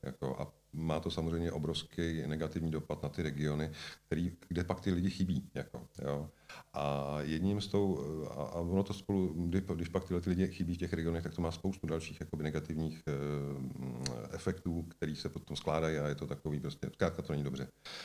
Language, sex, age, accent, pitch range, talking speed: Czech, male, 40-59, native, 75-90 Hz, 190 wpm